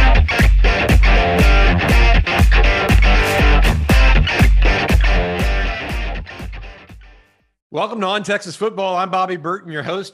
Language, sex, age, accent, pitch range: English, male, 50-69, American, 135-175 Hz